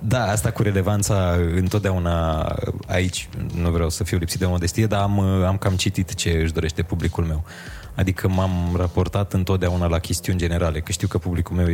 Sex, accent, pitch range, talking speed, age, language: male, native, 85-105 Hz, 180 wpm, 20-39, Romanian